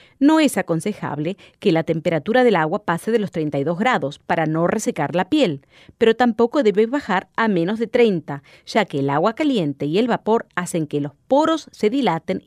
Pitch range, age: 160-250 Hz, 30-49